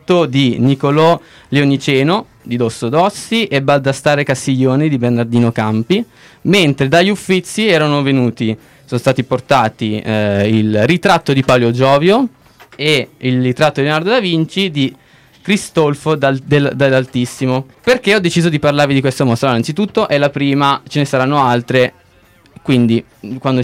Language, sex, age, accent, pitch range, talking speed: Italian, male, 20-39, native, 125-155 Hz, 145 wpm